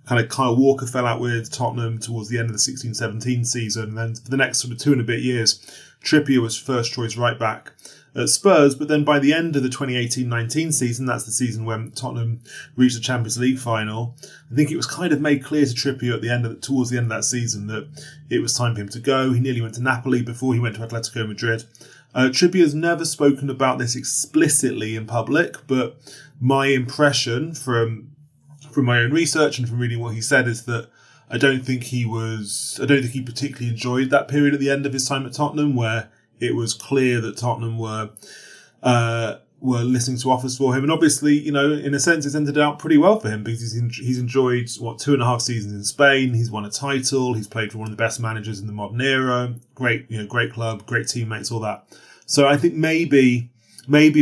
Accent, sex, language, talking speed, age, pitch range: British, male, English, 235 wpm, 30-49, 115-140 Hz